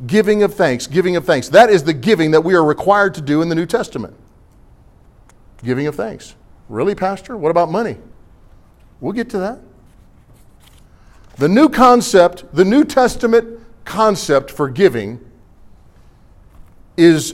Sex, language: male, English